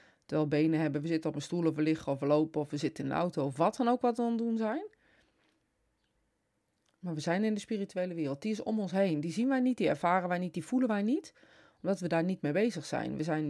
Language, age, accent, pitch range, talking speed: Dutch, 30-49, Dutch, 155-220 Hz, 280 wpm